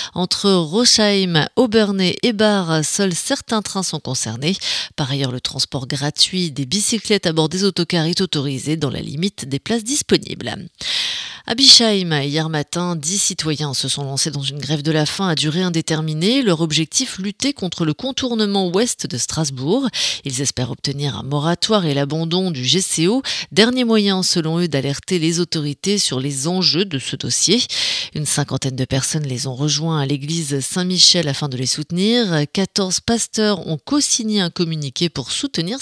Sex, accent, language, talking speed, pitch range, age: female, French, French, 170 wpm, 145-195 Hz, 30-49